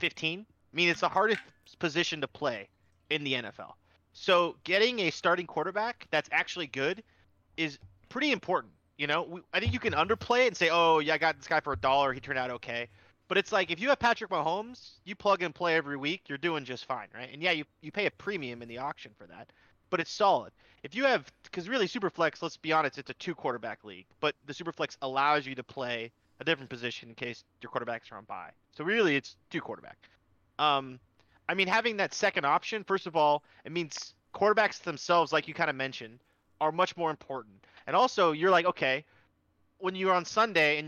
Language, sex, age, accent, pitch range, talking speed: English, male, 30-49, American, 125-175 Hz, 220 wpm